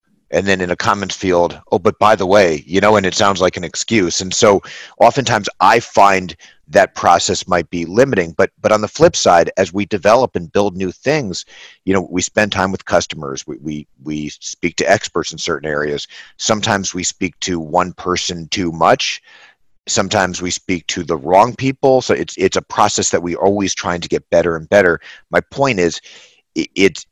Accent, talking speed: American, 200 wpm